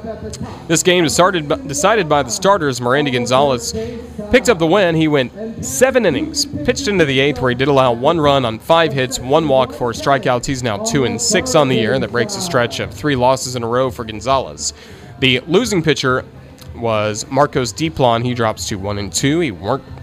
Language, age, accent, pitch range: English, 30-49, American, 115-165 Hz